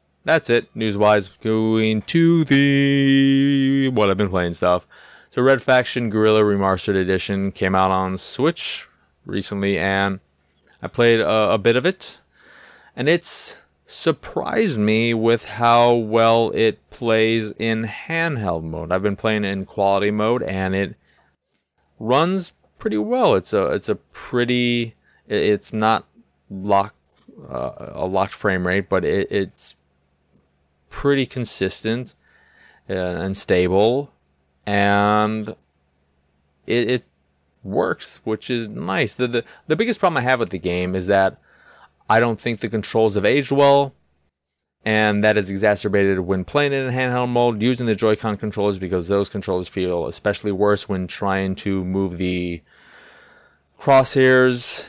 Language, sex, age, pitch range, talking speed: English, male, 20-39, 95-120 Hz, 140 wpm